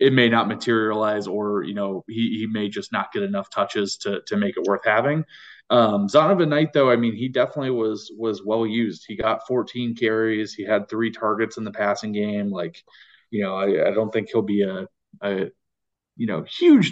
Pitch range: 105-130 Hz